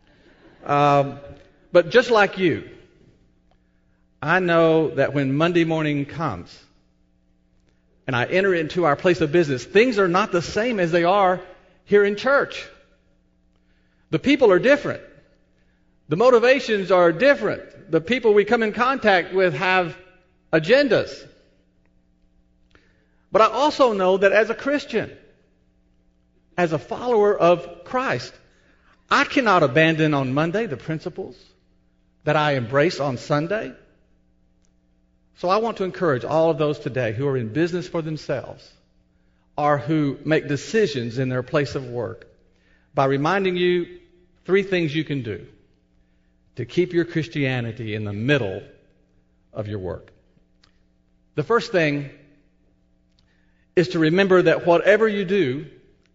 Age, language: 50-69, English